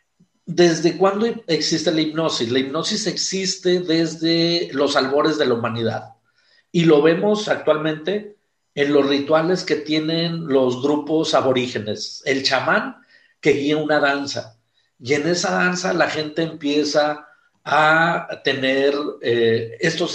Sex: male